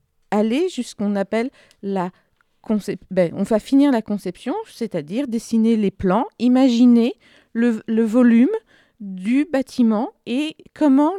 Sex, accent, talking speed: female, French, 135 wpm